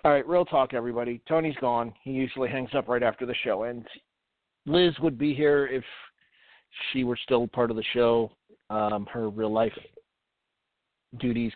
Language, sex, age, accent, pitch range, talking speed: English, male, 40-59, American, 115-140 Hz, 165 wpm